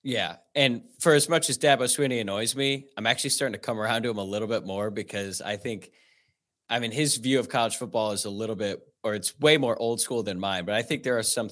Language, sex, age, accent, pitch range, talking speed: English, male, 20-39, American, 105-135 Hz, 260 wpm